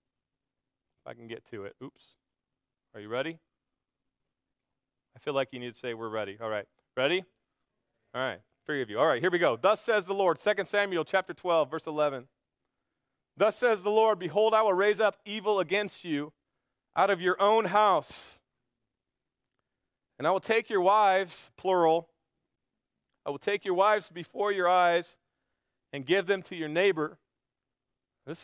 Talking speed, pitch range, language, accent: 170 wpm, 140-200 Hz, English, American